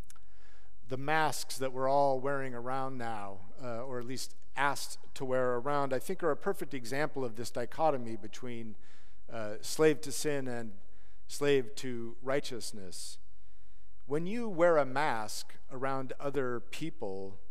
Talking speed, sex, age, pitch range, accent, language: 145 wpm, male, 50-69, 100-145 Hz, American, English